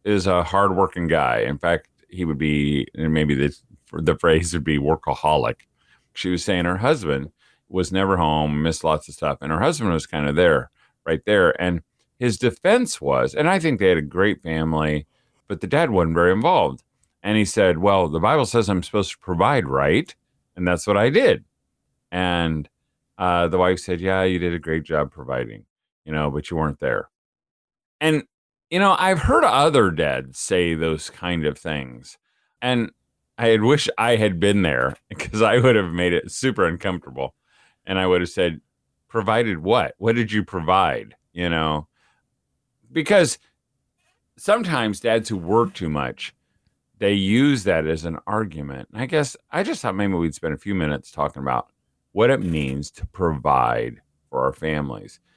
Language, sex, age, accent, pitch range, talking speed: English, male, 40-59, American, 75-105 Hz, 180 wpm